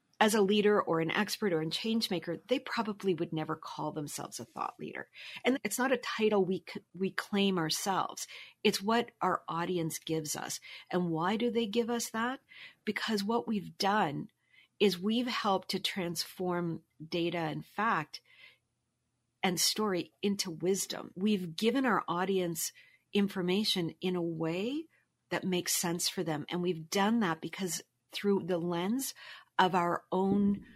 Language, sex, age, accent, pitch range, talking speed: English, female, 40-59, American, 170-210 Hz, 160 wpm